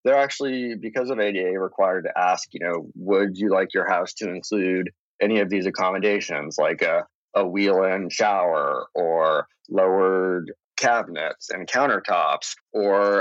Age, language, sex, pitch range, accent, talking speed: 30-49, English, male, 95-120 Hz, American, 145 wpm